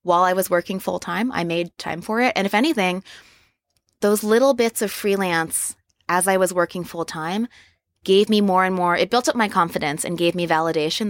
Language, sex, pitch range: English, female, 165-235 Hz